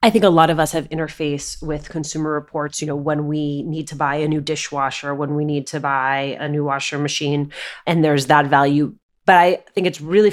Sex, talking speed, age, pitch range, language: female, 225 wpm, 30-49, 150-185 Hz, English